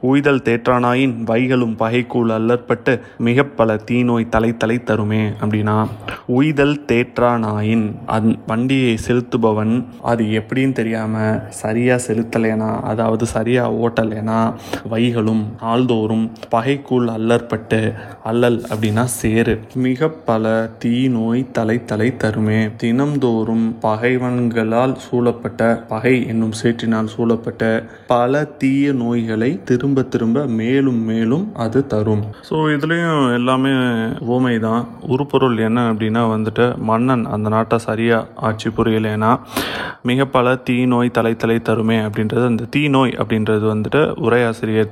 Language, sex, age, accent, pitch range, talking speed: Tamil, male, 20-39, native, 110-125 Hz, 70 wpm